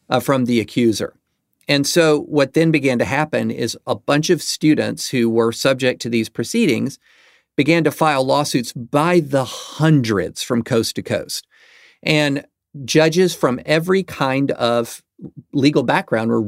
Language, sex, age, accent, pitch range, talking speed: English, male, 50-69, American, 115-150 Hz, 150 wpm